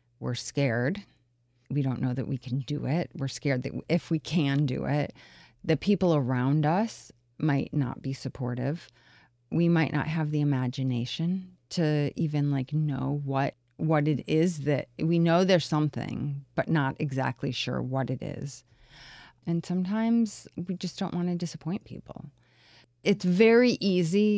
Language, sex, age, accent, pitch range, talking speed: English, female, 30-49, American, 140-195 Hz, 160 wpm